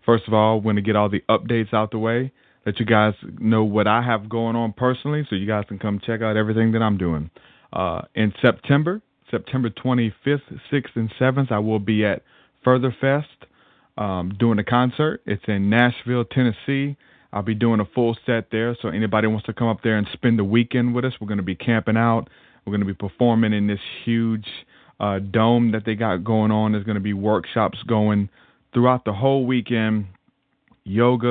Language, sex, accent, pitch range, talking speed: English, male, American, 100-120 Hz, 205 wpm